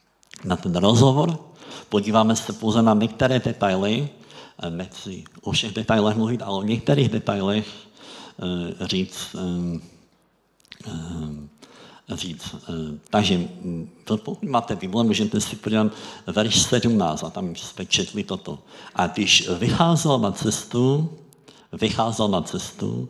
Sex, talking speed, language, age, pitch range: male, 110 wpm, Czech, 60-79, 95-120 Hz